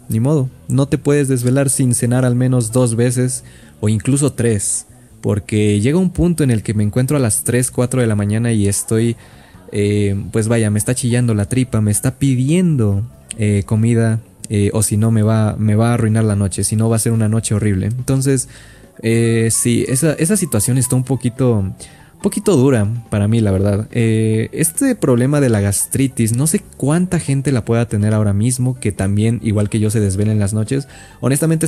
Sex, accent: male, Mexican